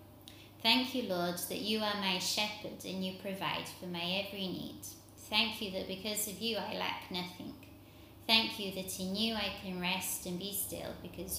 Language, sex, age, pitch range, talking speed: English, female, 20-39, 180-205 Hz, 190 wpm